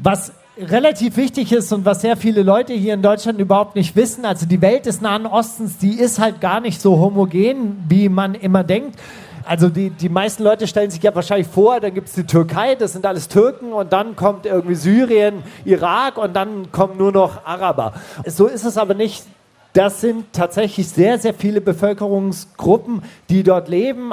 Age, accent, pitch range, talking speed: 40-59, German, 185-220 Hz, 195 wpm